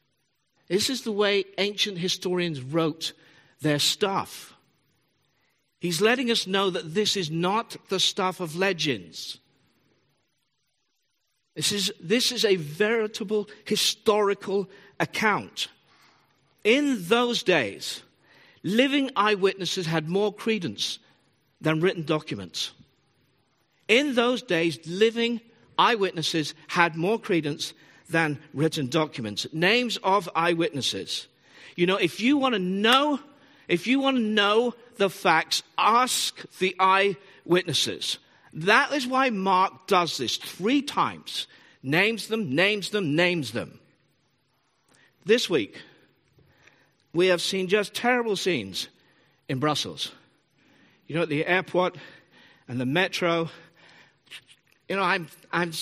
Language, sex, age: English, male, 50-69